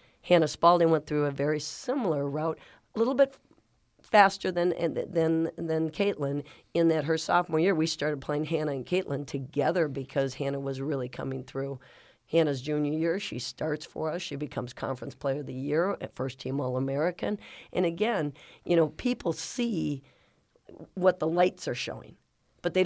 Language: English